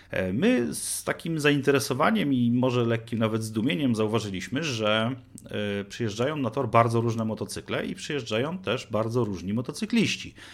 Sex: male